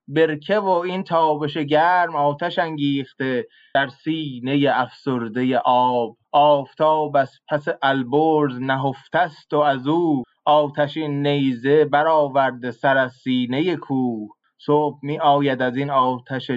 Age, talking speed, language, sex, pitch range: 20-39, 115 wpm, Persian, male, 130-170 Hz